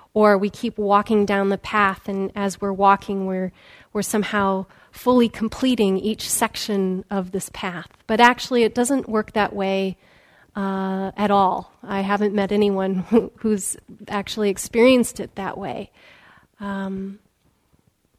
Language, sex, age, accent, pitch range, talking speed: English, female, 30-49, American, 195-225 Hz, 140 wpm